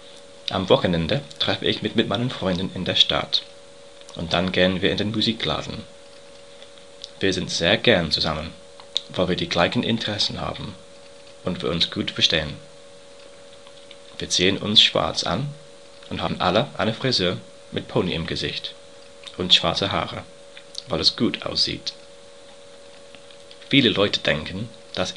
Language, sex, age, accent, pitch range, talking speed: English, male, 30-49, German, 80-95 Hz, 140 wpm